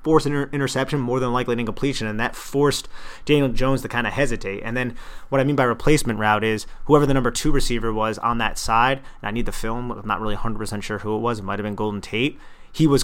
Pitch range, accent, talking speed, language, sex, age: 105-130 Hz, American, 260 wpm, English, male, 30-49